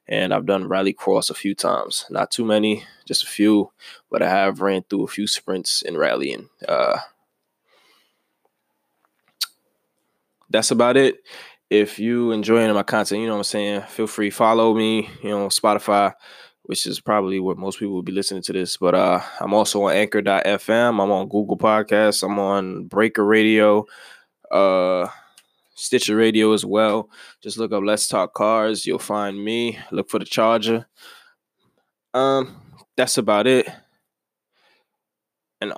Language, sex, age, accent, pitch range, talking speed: English, male, 10-29, American, 100-110 Hz, 160 wpm